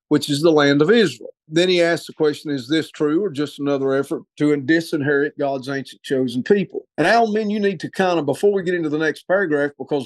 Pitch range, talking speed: 145-180 Hz, 245 wpm